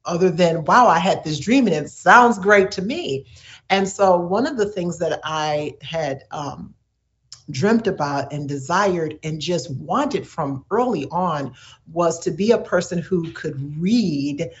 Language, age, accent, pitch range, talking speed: English, 50-69, American, 150-210 Hz, 170 wpm